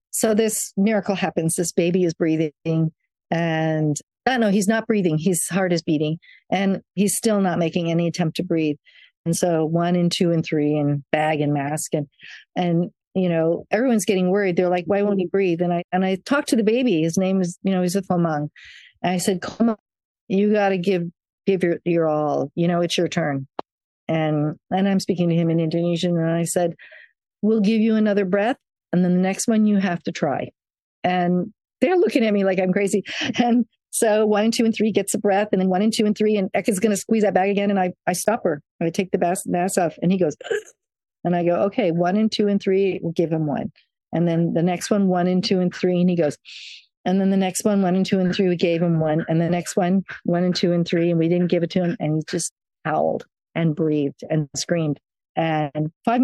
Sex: female